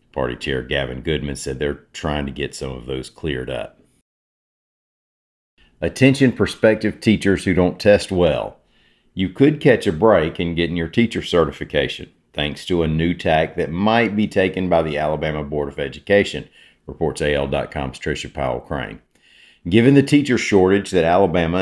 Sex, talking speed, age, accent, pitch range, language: male, 160 wpm, 50-69, American, 75-95 Hz, English